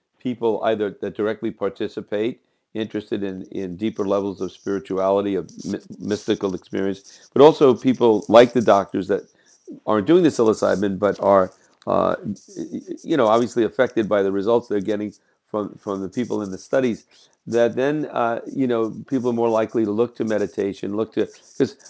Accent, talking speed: American, 165 wpm